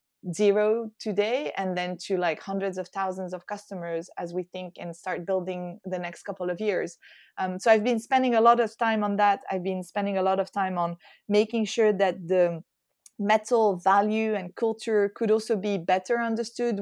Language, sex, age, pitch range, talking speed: English, female, 20-39, 180-215 Hz, 195 wpm